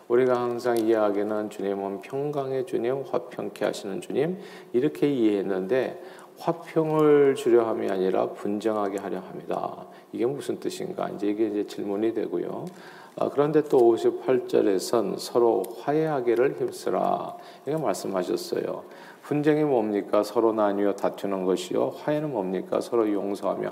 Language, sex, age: Korean, male, 40-59